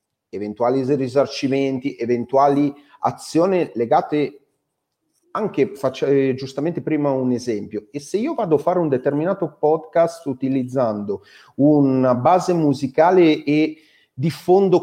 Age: 40-59